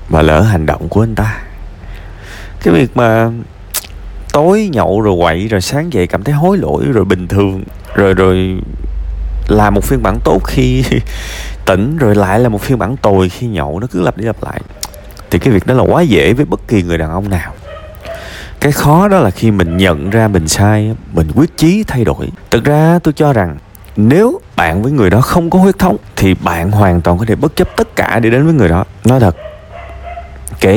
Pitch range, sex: 90-125 Hz, male